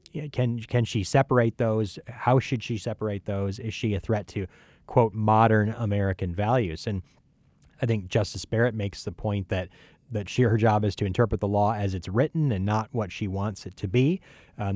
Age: 30-49